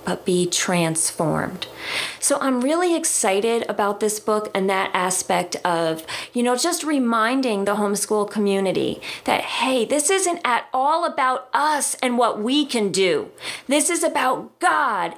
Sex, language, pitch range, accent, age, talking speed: female, English, 190-280 Hz, American, 40-59, 150 wpm